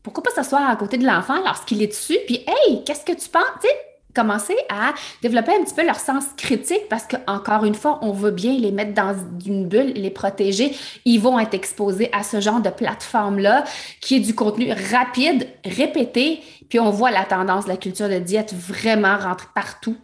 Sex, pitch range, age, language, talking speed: female, 200-255 Hz, 30-49, French, 200 wpm